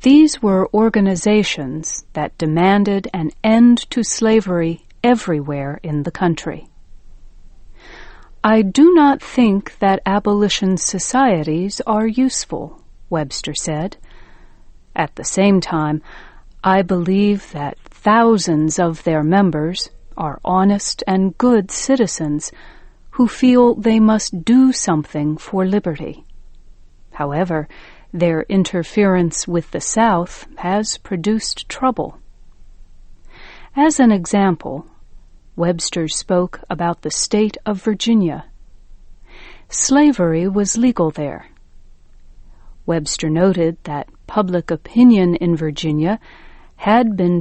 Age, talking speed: 40-59, 100 wpm